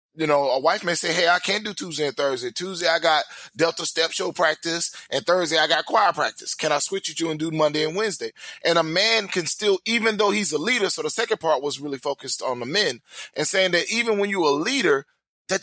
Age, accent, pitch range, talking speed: 20-39, American, 155-185 Hz, 250 wpm